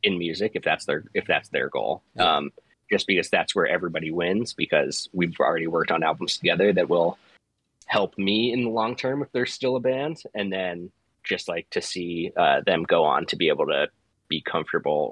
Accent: American